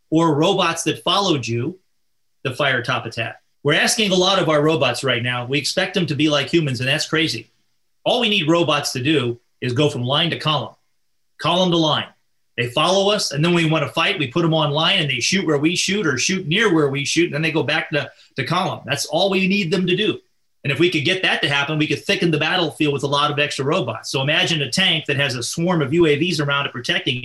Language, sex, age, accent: English, male, 30-49, American